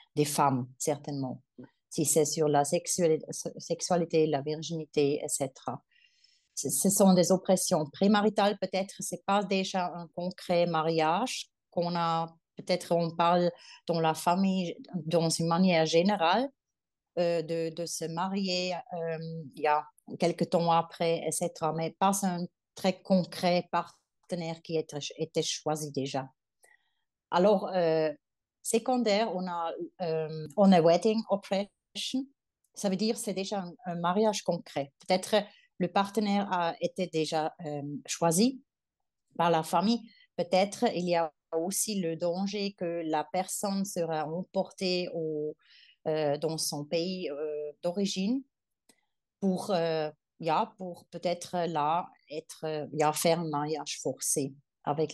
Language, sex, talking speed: French, female, 135 wpm